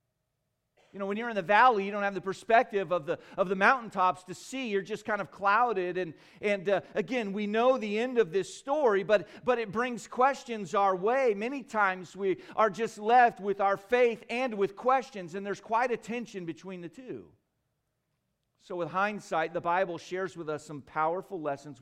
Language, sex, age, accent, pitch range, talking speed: English, male, 40-59, American, 155-215 Hz, 200 wpm